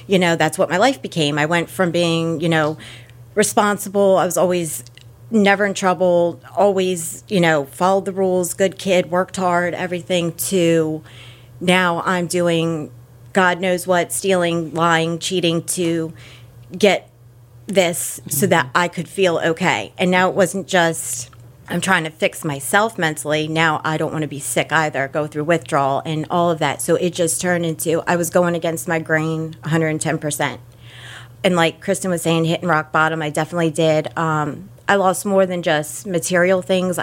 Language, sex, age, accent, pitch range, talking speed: English, female, 40-59, American, 150-180 Hz, 175 wpm